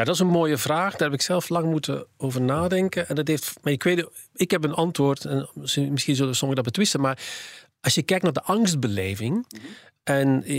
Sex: male